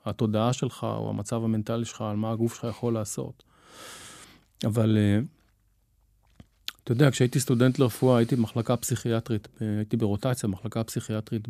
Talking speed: 130 wpm